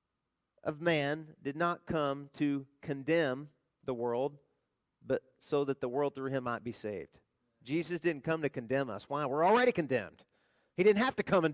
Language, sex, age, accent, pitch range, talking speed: English, male, 40-59, American, 150-205 Hz, 180 wpm